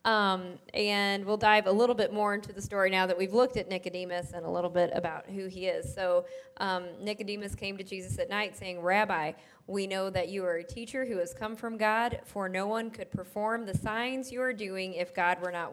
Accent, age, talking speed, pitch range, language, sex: American, 20-39, 235 wpm, 180-215 Hz, English, female